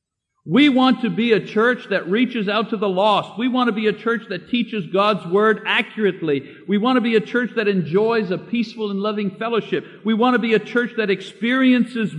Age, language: 50-69, English